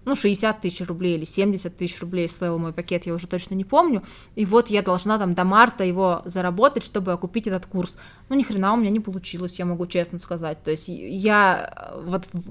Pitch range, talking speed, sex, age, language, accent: 185-230 Hz, 205 wpm, female, 20-39, Russian, native